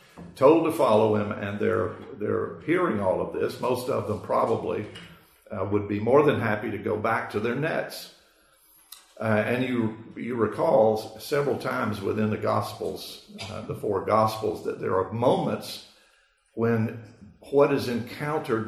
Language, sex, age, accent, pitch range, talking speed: English, male, 50-69, American, 105-125 Hz, 155 wpm